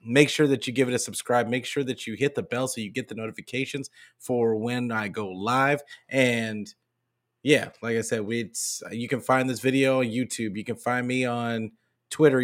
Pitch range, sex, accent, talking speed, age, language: 115-130 Hz, male, American, 205 wpm, 30-49, English